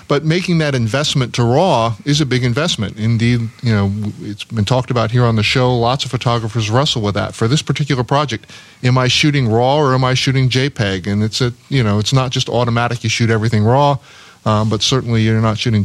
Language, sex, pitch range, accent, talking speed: English, male, 110-135 Hz, American, 225 wpm